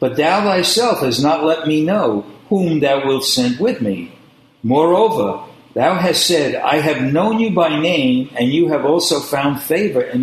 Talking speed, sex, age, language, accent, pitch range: 180 wpm, male, 60-79, English, American, 125-170 Hz